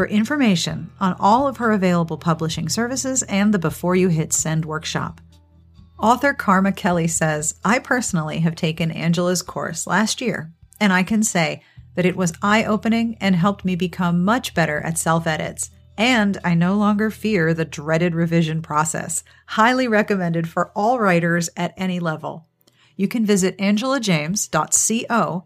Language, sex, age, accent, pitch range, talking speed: English, female, 40-59, American, 165-205 Hz, 155 wpm